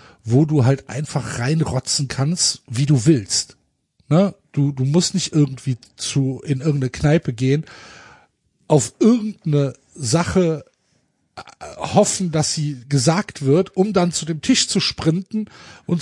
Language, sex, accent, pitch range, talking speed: German, male, German, 125-155 Hz, 135 wpm